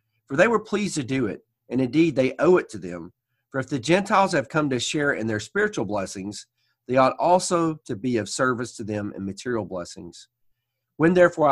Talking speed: 210 wpm